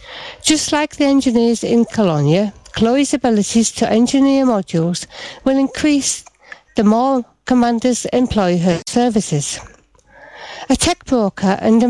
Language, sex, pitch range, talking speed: English, female, 195-265 Hz, 120 wpm